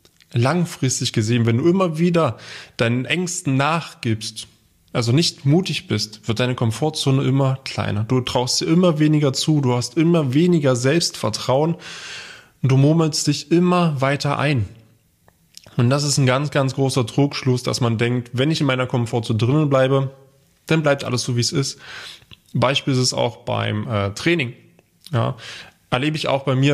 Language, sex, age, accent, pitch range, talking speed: German, male, 20-39, German, 120-145 Hz, 165 wpm